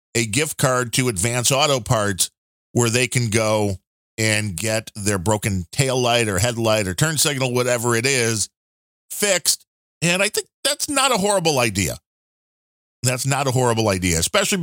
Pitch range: 105-135 Hz